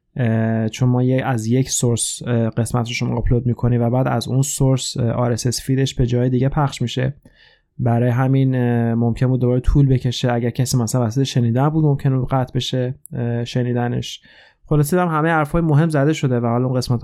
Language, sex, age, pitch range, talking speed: Persian, male, 20-39, 120-140 Hz, 180 wpm